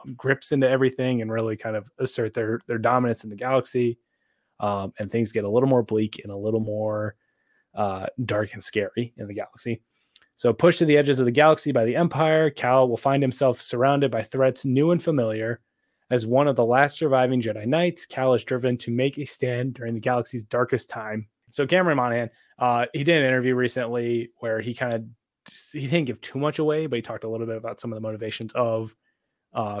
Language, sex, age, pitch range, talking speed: English, male, 20-39, 110-130 Hz, 215 wpm